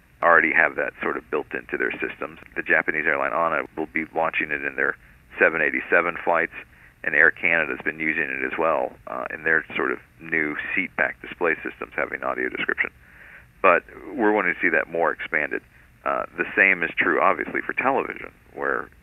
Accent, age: American, 50-69